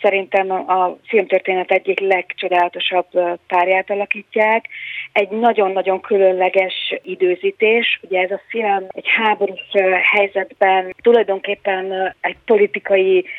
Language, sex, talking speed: Hungarian, female, 95 wpm